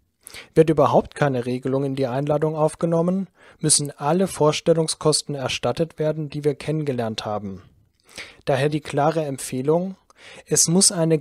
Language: German